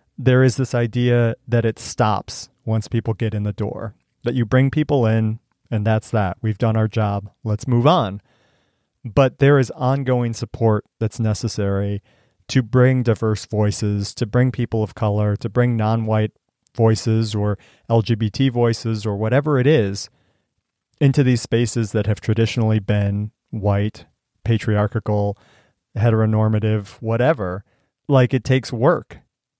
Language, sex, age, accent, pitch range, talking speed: English, male, 40-59, American, 110-130 Hz, 140 wpm